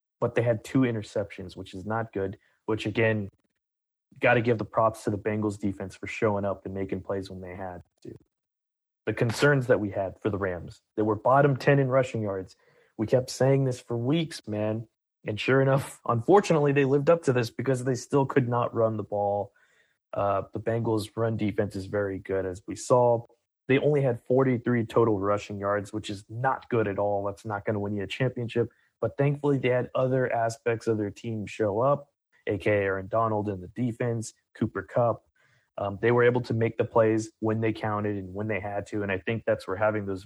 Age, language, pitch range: 20-39, English, 100-120 Hz